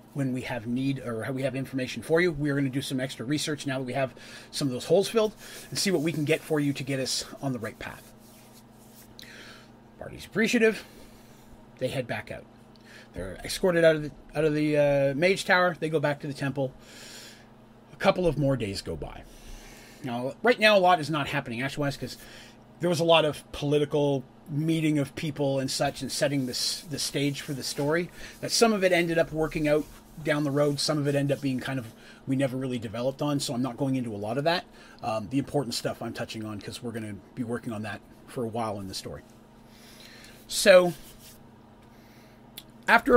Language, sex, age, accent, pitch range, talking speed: English, male, 30-49, American, 115-150 Hz, 220 wpm